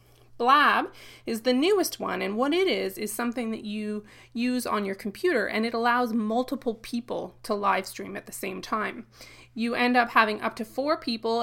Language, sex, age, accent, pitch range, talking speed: English, female, 20-39, American, 205-250 Hz, 195 wpm